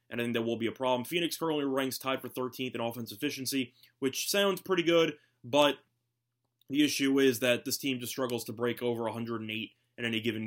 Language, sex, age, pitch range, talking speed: English, male, 20-39, 120-140 Hz, 210 wpm